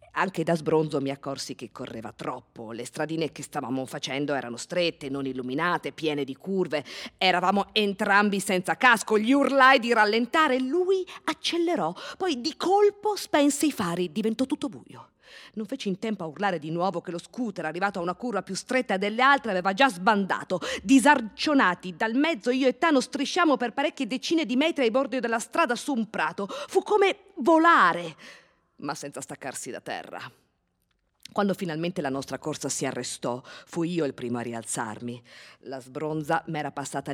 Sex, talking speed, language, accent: female, 170 wpm, Italian, native